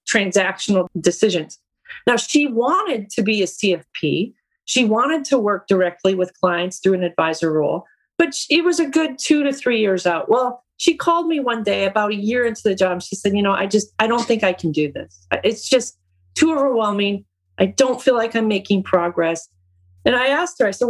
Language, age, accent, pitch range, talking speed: English, 40-59, American, 190-255 Hz, 205 wpm